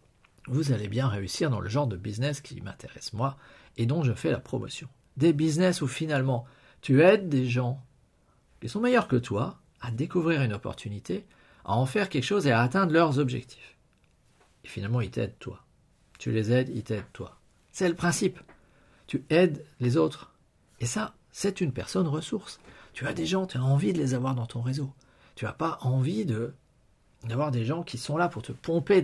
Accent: French